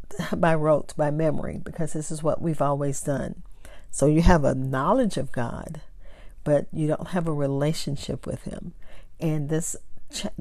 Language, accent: English, American